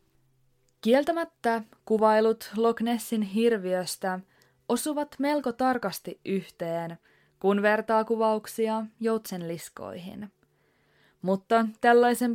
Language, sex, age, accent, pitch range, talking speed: Finnish, female, 20-39, native, 185-240 Hz, 80 wpm